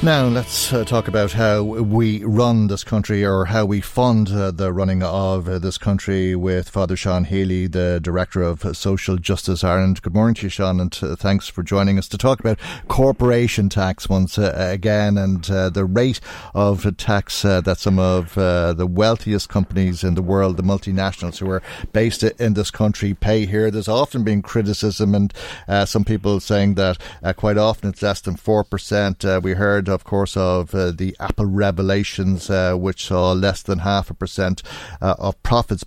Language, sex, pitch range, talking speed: English, male, 95-110 Hz, 175 wpm